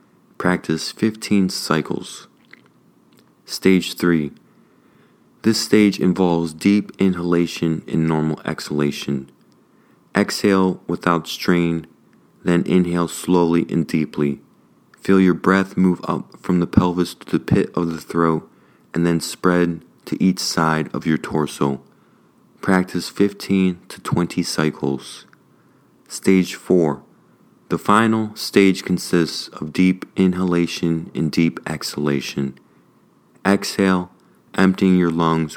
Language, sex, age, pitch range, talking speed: English, male, 30-49, 80-95 Hz, 110 wpm